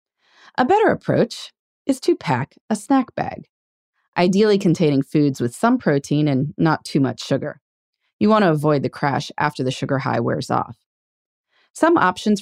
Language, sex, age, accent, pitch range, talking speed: English, female, 30-49, American, 145-210 Hz, 165 wpm